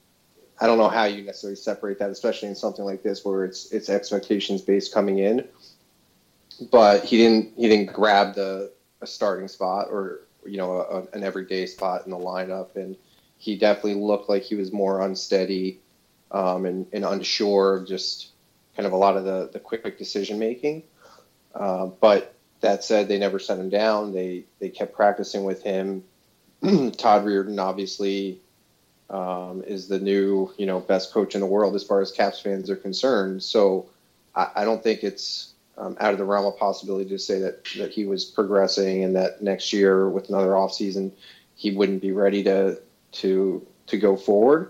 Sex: male